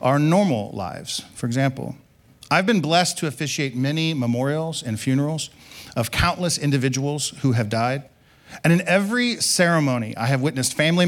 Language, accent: English, American